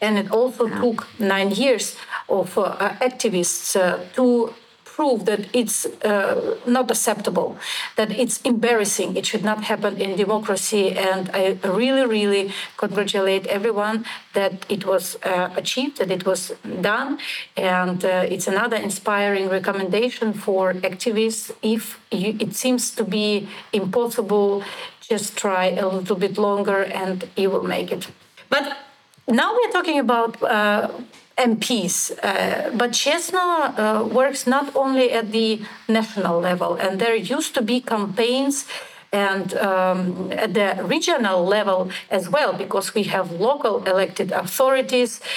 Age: 40-59